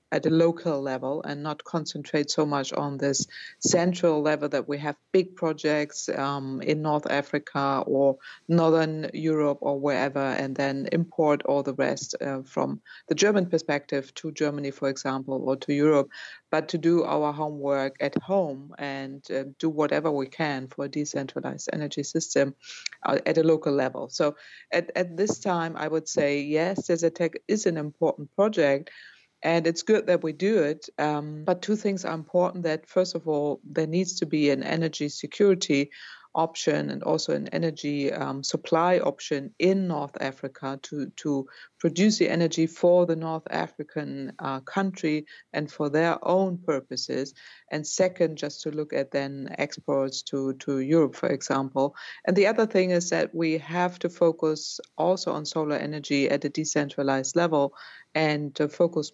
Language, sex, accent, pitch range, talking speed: English, female, German, 140-165 Hz, 170 wpm